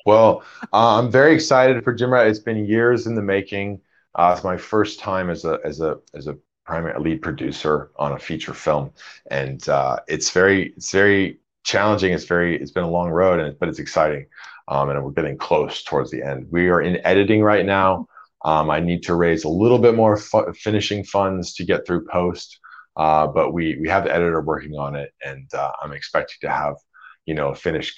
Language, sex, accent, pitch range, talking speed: English, male, American, 75-105 Hz, 210 wpm